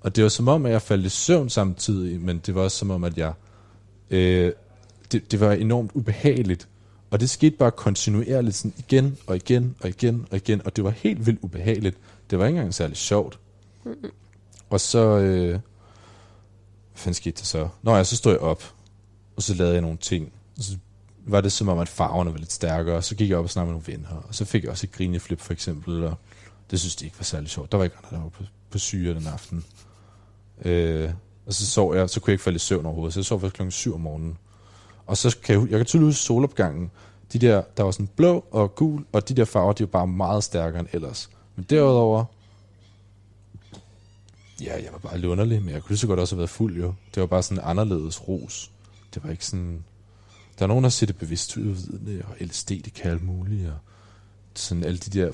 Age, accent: 30-49, native